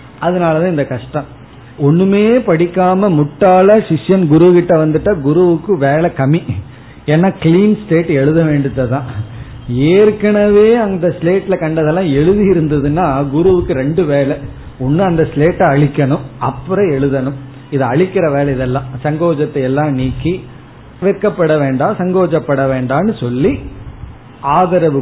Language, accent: Tamil, native